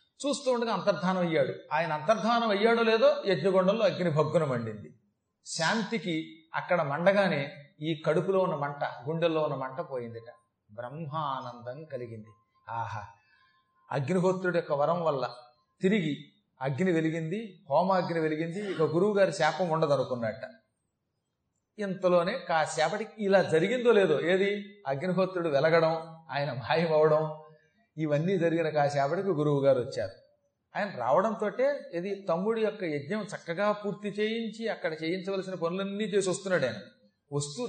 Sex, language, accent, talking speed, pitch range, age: male, Telugu, native, 115 wpm, 155-205 Hz, 30-49